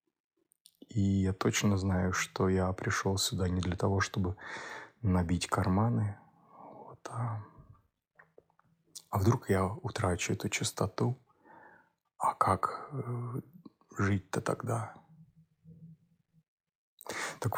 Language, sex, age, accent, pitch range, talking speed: Russian, male, 30-49, native, 95-120 Hz, 90 wpm